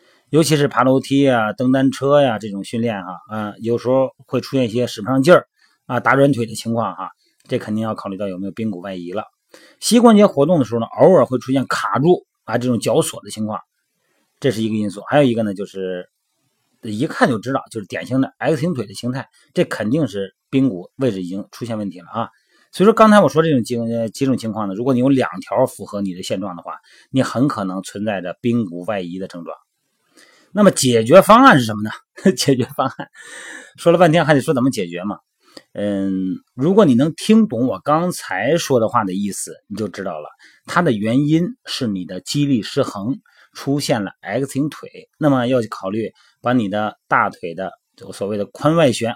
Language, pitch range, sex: Chinese, 105-145 Hz, male